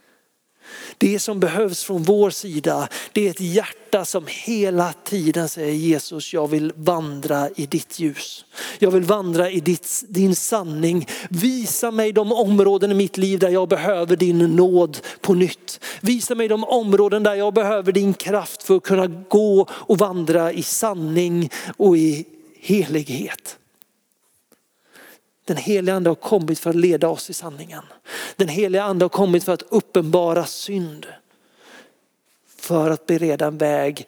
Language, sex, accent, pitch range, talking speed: Swedish, male, native, 165-200 Hz, 150 wpm